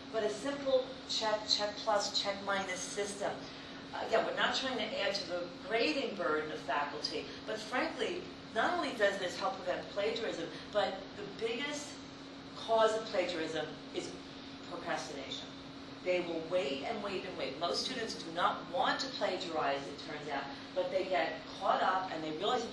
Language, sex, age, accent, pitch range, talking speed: English, female, 40-59, American, 170-230 Hz, 170 wpm